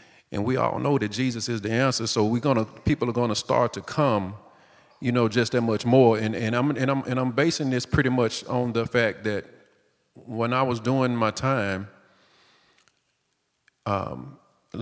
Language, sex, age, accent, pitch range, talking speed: English, male, 40-59, American, 105-130 Hz, 195 wpm